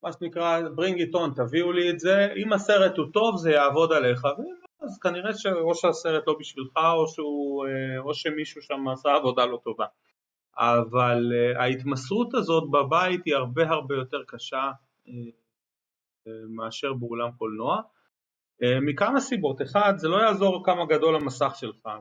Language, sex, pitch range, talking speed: Hebrew, male, 120-165 Hz, 145 wpm